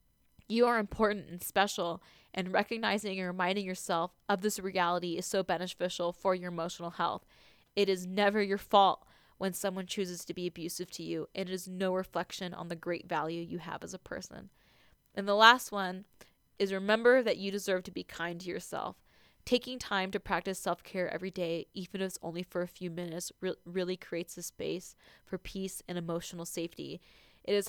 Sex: female